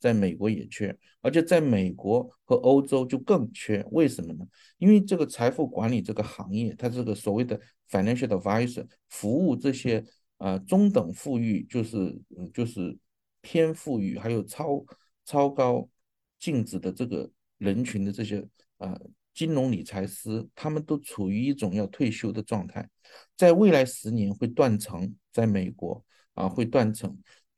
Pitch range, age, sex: 105-145 Hz, 50-69, male